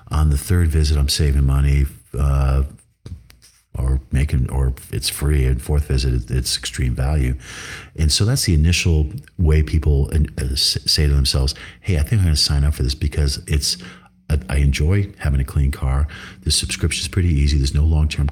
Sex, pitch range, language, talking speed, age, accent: male, 70-80 Hz, English, 185 wpm, 50-69, American